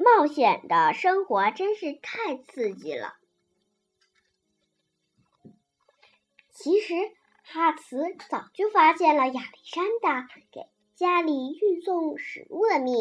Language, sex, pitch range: Chinese, male, 250-405 Hz